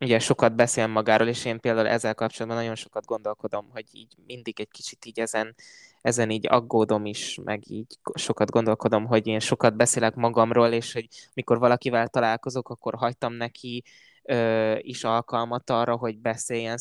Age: 20-39